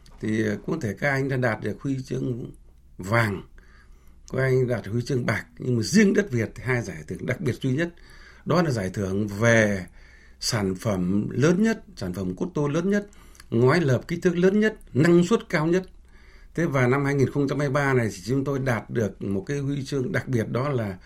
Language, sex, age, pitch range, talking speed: Vietnamese, male, 60-79, 95-150 Hz, 210 wpm